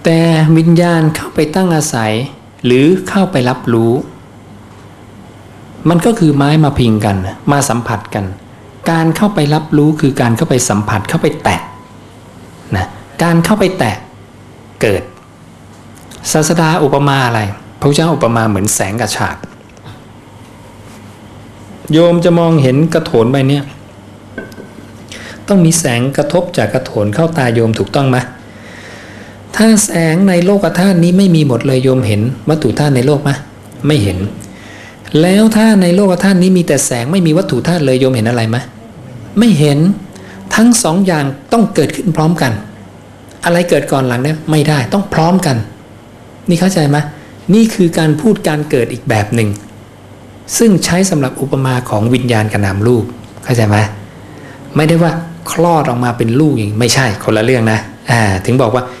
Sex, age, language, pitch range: male, 60-79, English, 110-160 Hz